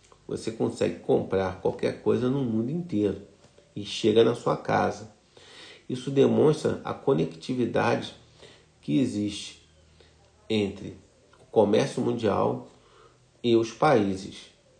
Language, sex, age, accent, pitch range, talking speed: Portuguese, male, 40-59, Brazilian, 100-125 Hz, 105 wpm